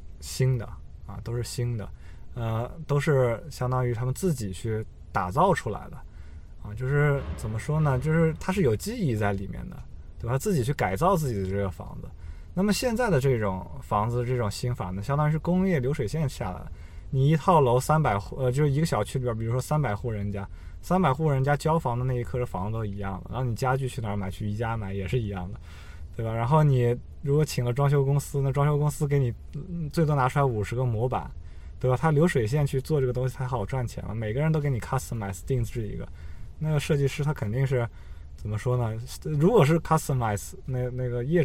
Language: Chinese